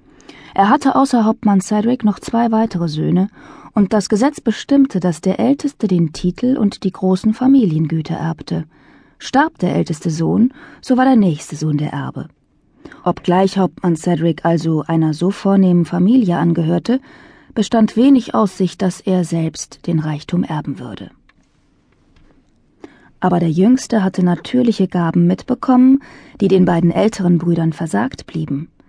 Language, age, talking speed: German, 20-39, 140 wpm